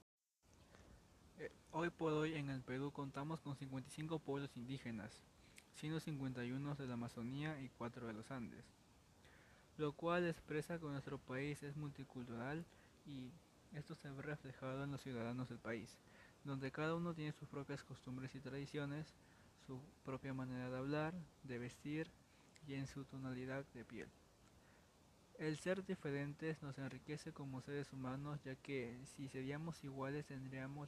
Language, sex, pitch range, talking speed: Spanish, male, 130-150 Hz, 145 wpm